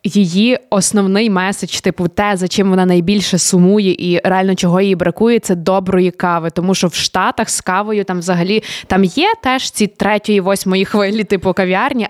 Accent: native